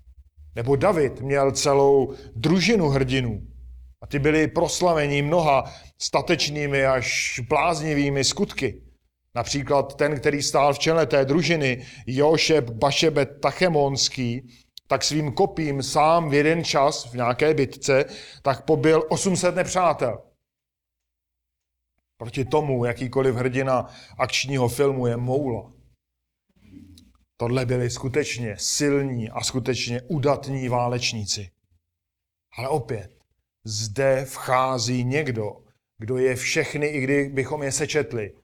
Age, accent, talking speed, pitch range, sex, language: 40-59, native, 110 wpm, 115-140 Hz, male, Czech